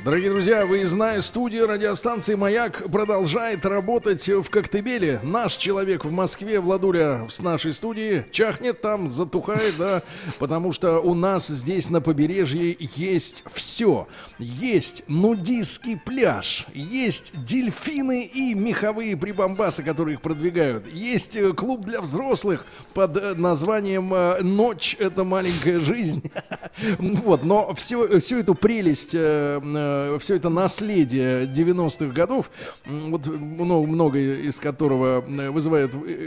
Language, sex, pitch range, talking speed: Russian, male, 150-195 Hz, 115 wpm